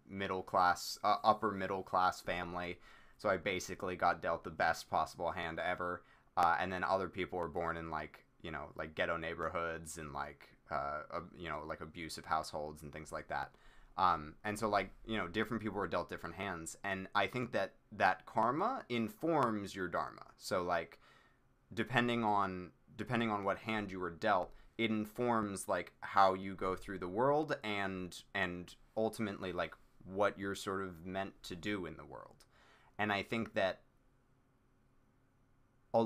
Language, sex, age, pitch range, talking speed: English, male, 20-39, 90-110 Hz, 175 wpm